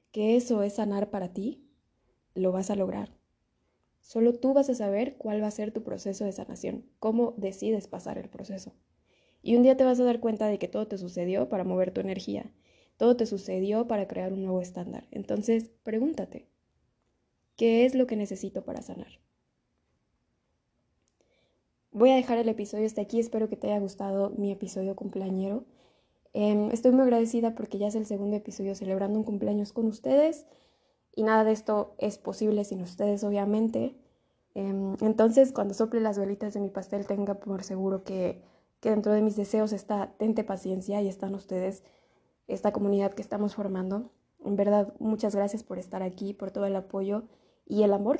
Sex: female